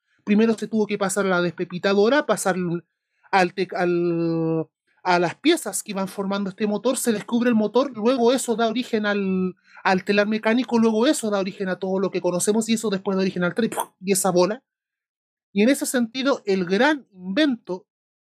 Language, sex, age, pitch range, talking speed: Spanish, male, 30-49, 185-235 Hz, 190 wpm